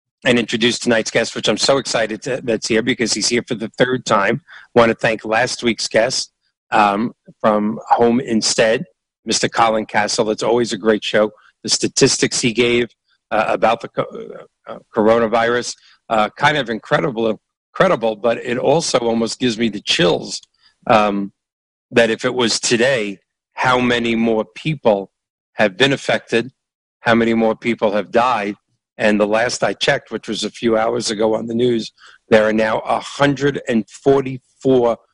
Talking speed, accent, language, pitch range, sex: 165 wpm, American, English, 110-125 Hz, male